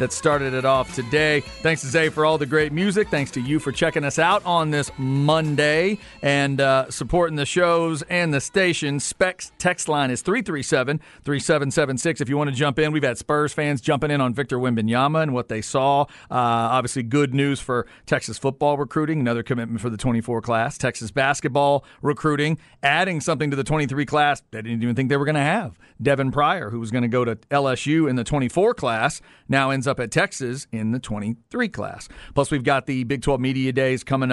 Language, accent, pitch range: English, American, 120-155 Hz